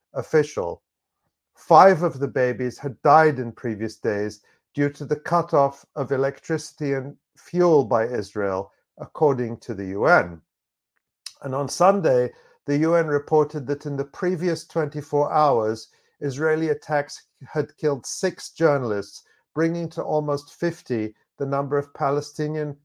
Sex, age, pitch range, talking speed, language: male, 50-69, 125-160 Hz, 130 wpm, English